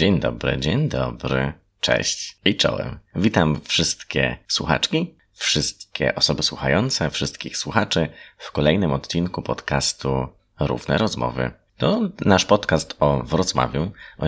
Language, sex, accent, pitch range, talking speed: Polish, male, native, 70-90 Hz, 115 wpm